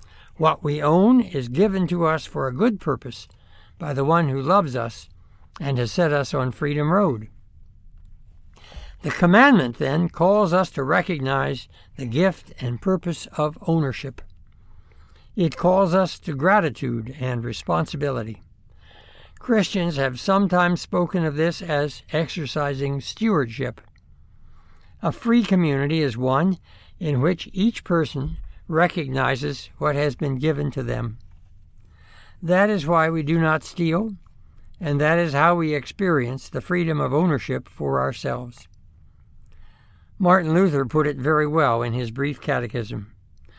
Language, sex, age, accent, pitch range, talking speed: English, male, 60-79, American, 120-175 Hz, 135 wpm